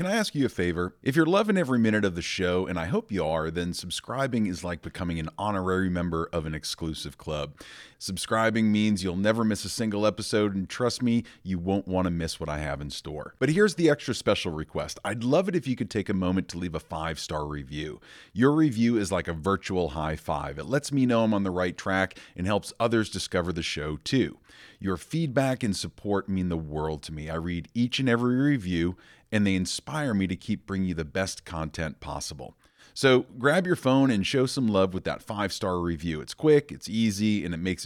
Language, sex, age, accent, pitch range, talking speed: English, male, 40-59, American, 85-115 Hz, 225 wpm